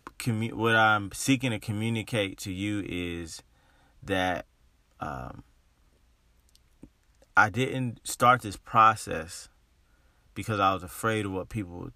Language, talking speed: English, 115 wpm